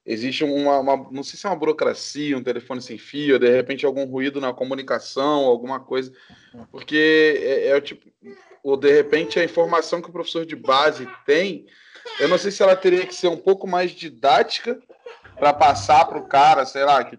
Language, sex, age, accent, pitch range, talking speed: Portuguese, male, 20-39, Brazilian, 135-195 Hz, 195 wpm